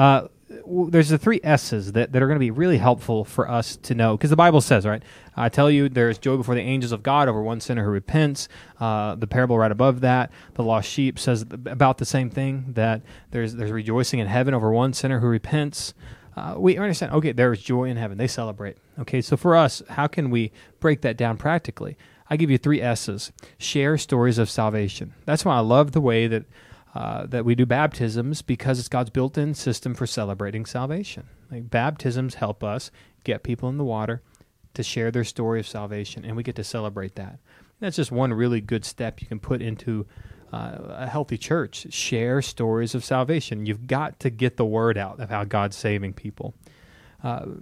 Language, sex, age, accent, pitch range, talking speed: English, male, 30-49, American, 110-140 Hz, 205 wpm